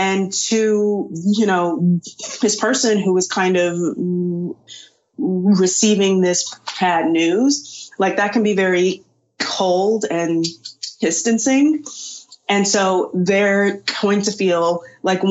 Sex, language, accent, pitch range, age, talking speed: female, English, American, 180-220 Hz, 20-39, 115 wpm